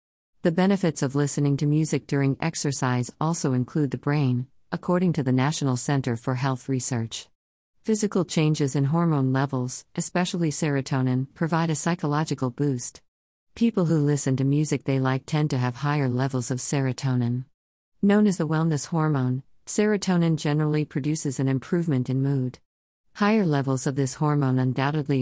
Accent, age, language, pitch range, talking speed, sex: American, 50-69, English, 130-160 Hz, 150 wpm, female